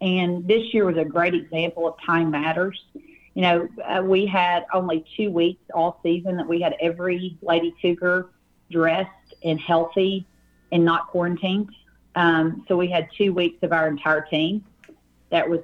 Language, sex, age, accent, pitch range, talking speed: English, female, 40-59, American, 165-190 Hz, 165 wpm